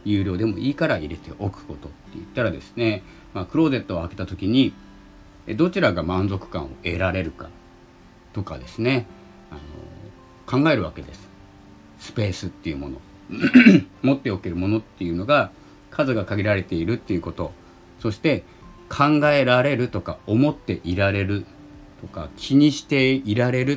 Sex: male